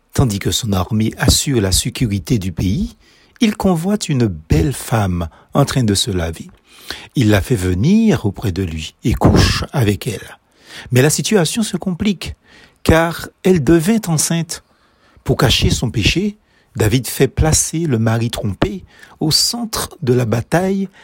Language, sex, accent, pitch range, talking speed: French, male, French, 105-170 Hz, 155 wpm